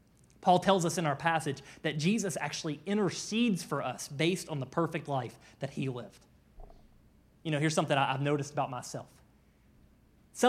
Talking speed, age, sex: 165 wpm, 30-49, male